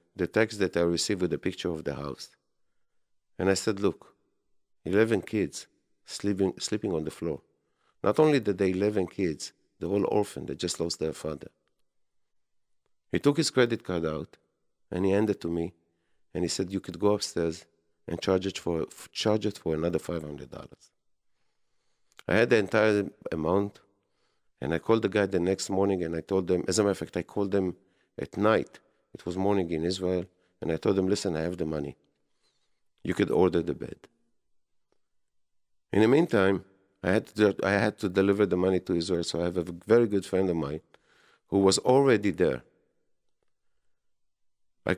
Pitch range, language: 85-110 Hz, English